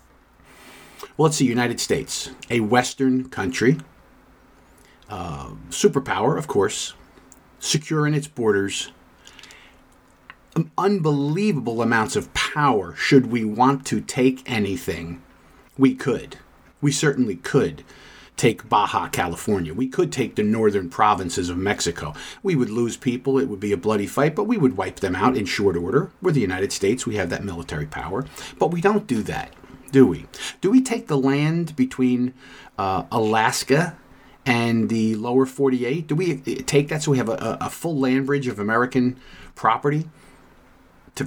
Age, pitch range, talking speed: 50-69, 115-150 Hz, 155 wpm